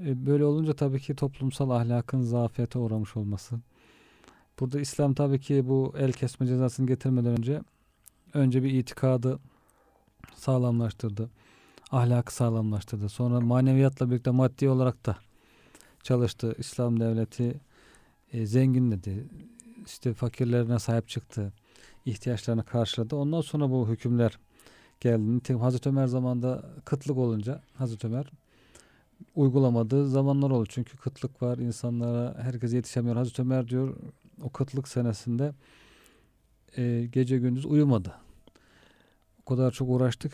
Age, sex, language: 40-59, male, Turkish